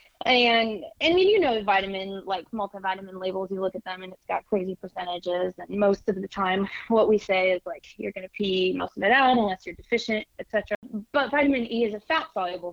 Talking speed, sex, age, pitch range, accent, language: 215 wpm, female, 20-39, 195-225 Hz, American, English